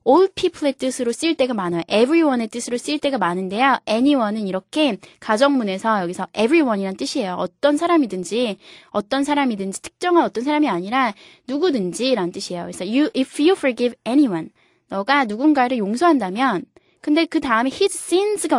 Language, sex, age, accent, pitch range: Korean, female, 20-39, native, 210-315 Hz